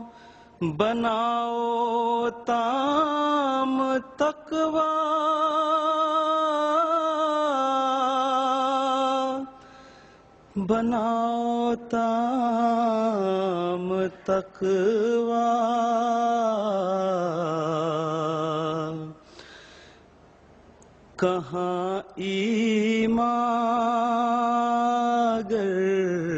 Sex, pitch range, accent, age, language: male, 160-235 Hz, Indian, 30-49, English